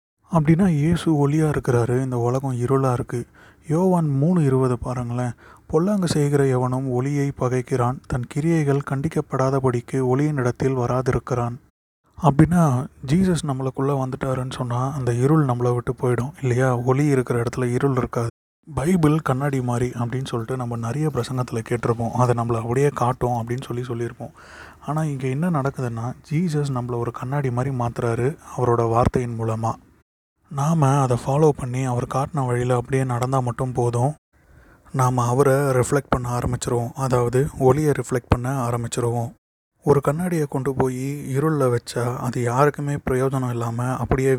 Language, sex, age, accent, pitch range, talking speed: Tamil, male, 30-49, native, 120-140 Hz, 135 wpm